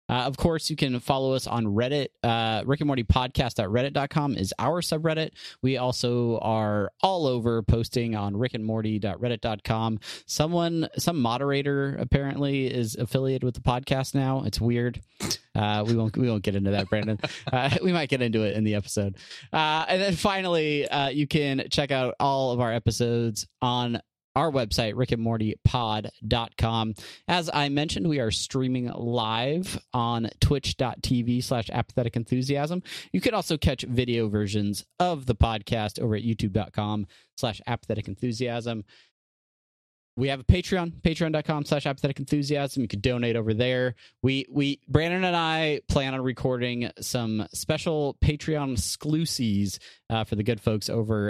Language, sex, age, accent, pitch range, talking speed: English, male, 30-49, American, 110-140 Hz, 150 wpm